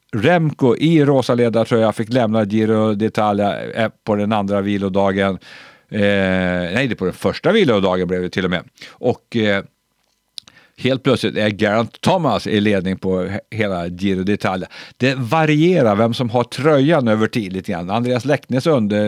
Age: 50-69